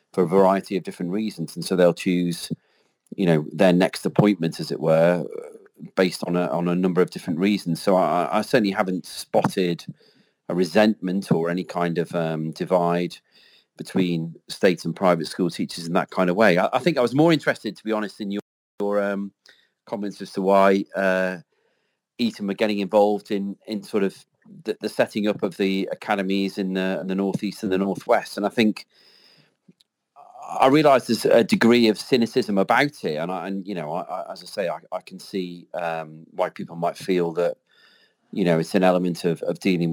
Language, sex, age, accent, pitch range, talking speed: English, male, 40-59, British, 90-100 Hz, 200 wpm